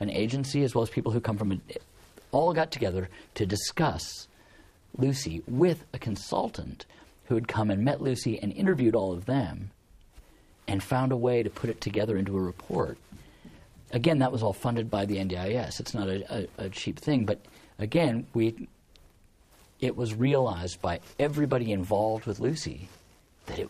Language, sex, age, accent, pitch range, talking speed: English, male, 50-69, American, 95-125 Hz, 170 wpm